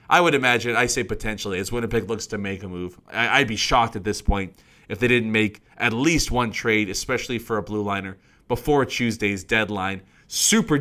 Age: 30-49